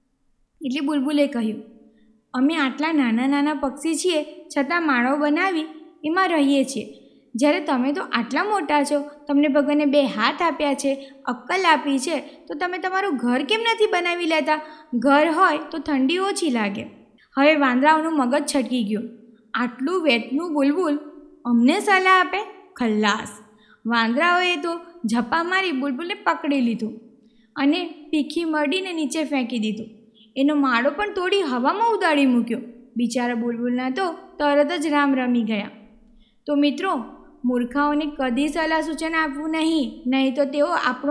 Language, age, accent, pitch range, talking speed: Gujarati, 20-39, native, 250-325 Hz, 135 wpm